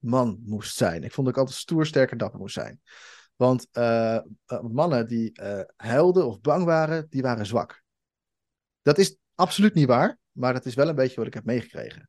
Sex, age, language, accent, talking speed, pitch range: male, 30-49, Dutch, Dutch, 195 wpm, 115-150 Hz